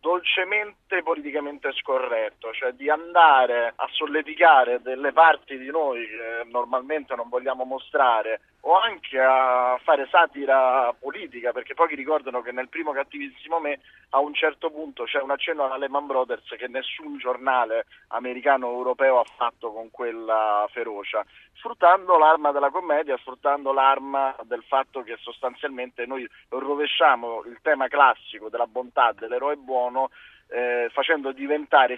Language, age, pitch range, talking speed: Italian, 30-49, 125-165 Hz, 135 wpm